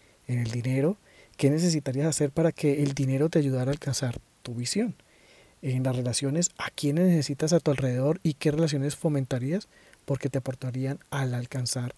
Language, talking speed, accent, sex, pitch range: Spanish, 170 wpm, Colombian, male, 130-155 Hz